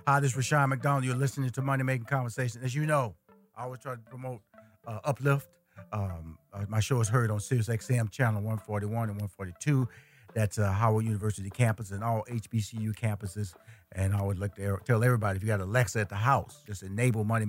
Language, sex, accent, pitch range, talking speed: English, male, American, 95-120 Hz, 210 wpm